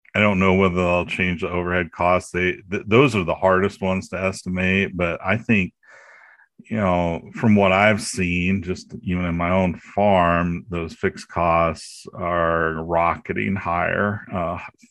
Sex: male